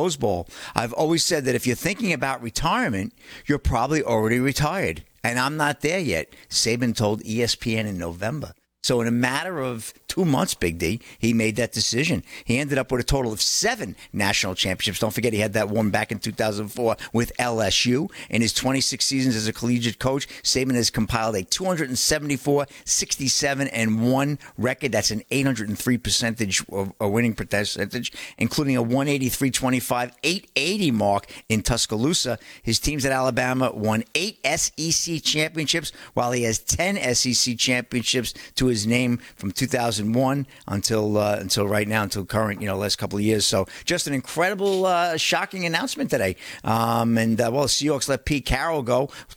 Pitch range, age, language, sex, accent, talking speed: 115-140 Hz, 50-69, English, male, American, 165 wpm